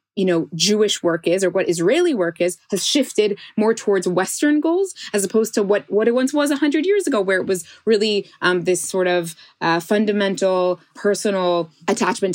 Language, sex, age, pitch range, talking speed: English, female, 20-39, 180-235 Hz, 195 wpm